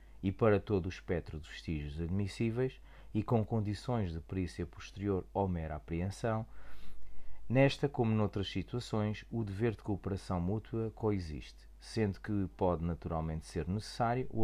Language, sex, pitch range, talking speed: Portuguese, male, 85-110 Hz, 140 wpm